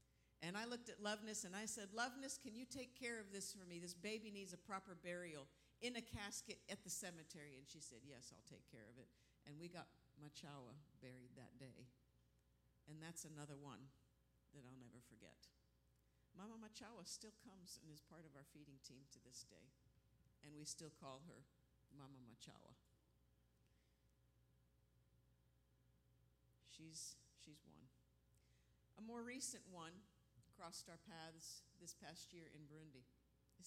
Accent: American